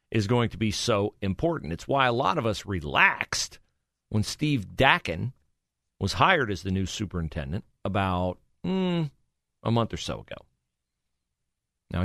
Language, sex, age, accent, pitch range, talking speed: English, male, 50-69, American, 85-130 Hz, 150 wpm